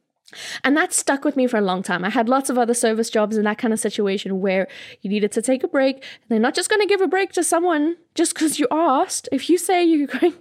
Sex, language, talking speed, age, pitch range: female, English, 275 wpm, 10-29, 220-355 Hz